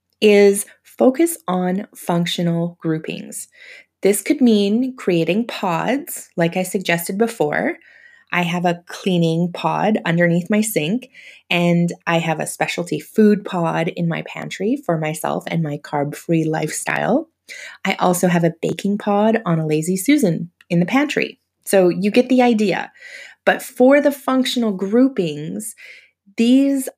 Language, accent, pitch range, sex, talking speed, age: English, American, 160-225 Hz, female, 140 wpm, 20-39